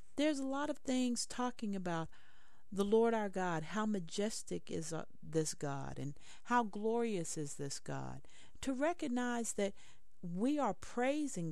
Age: 50-69